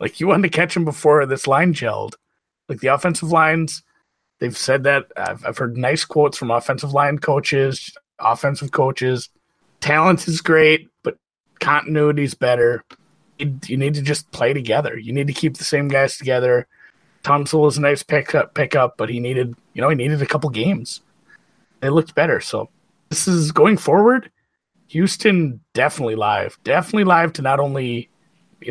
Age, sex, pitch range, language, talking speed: 30-49, male, 130-170 Hz, English, 175 wpm